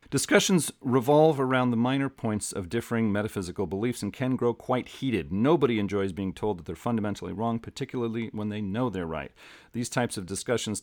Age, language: 40-59, English